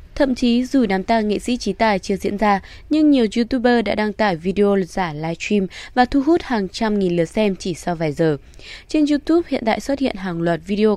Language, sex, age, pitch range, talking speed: Vietnamese, female, 20-39, 175-240 Hz, 235 wpm